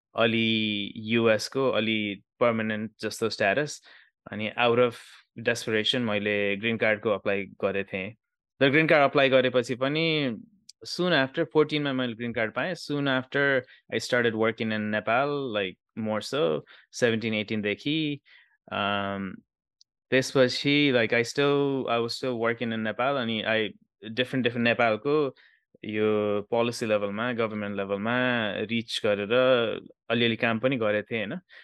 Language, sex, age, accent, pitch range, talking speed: English, male, 20-39, Indian, 105-130 Hz, 155 wpm